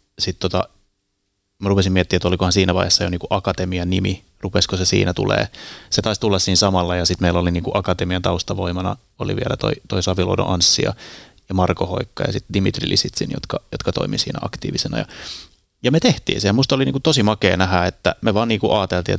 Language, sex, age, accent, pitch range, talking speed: Finnish, male, 30-49, native, 90-100 Hz, 200 wpm